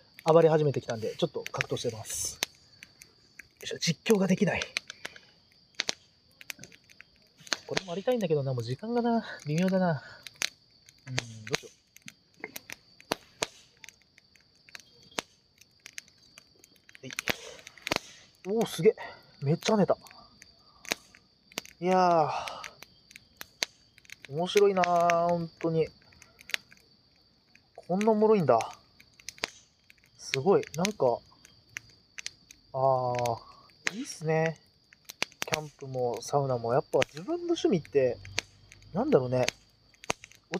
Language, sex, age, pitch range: Japanese, male, 30-49, 140-230 Hz